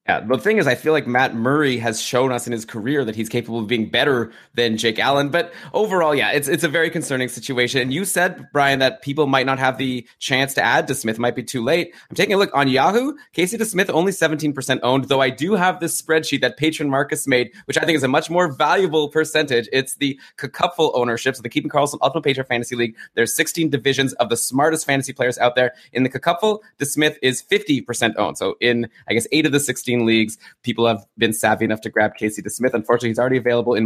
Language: English